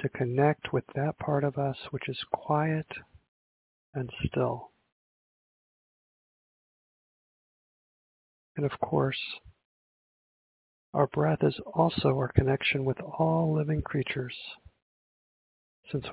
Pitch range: 100-145 Hz